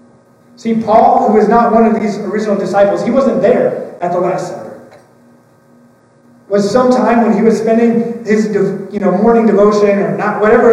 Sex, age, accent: male, 30-49, American